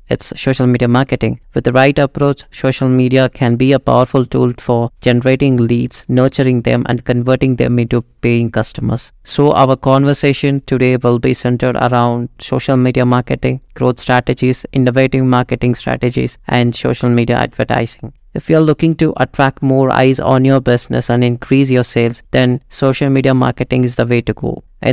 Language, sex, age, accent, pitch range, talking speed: English, male, 30-49, Indian, 120-135 Hz, 170 wpm